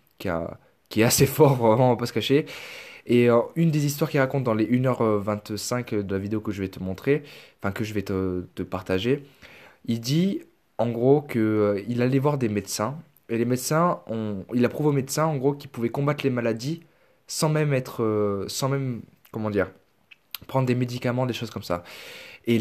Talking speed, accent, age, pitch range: 205 wpm, French, 20-39, 110-140 Hz